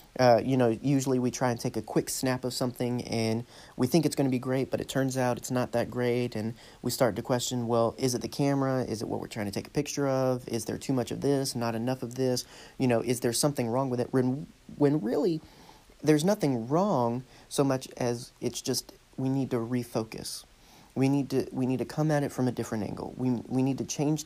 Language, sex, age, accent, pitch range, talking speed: English, male, 30-49, American, 120-140 Hz, 245 wpm